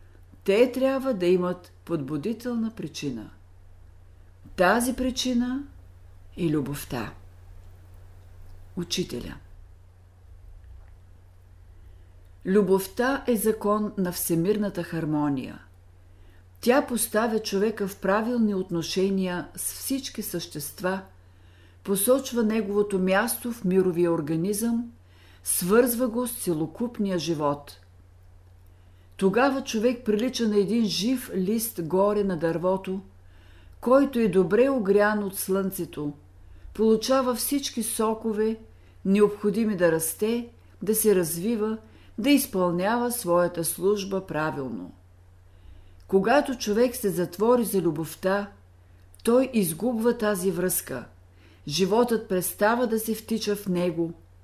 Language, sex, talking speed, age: Bulgarian, female, 95 wpm, 50-69